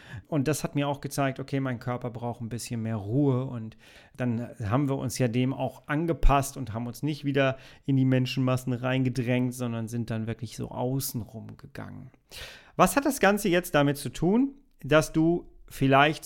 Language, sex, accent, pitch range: German, male, German, 125-155 Hz